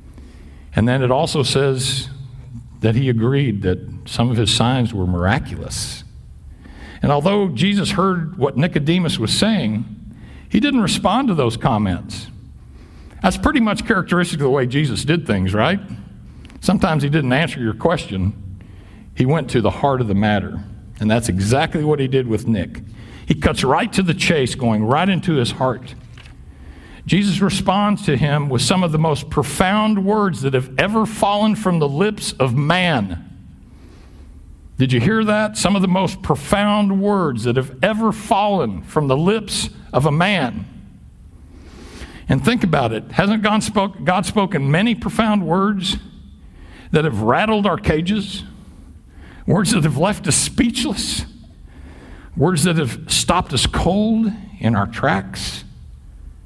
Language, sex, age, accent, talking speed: English, male, 60-79, American, 155 wpm